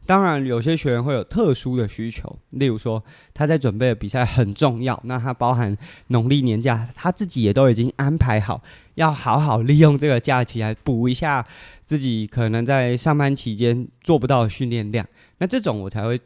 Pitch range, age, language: 115-155 Hz, 20-39, Chinese